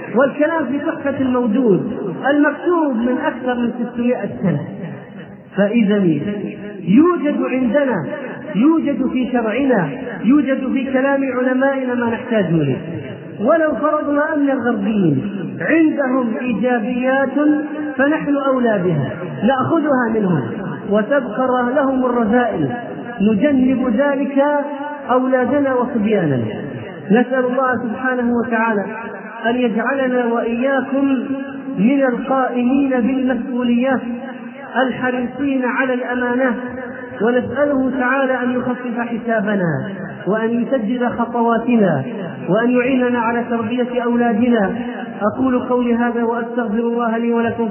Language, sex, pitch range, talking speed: Arabic, male, 220-265 Hz, 90 wpm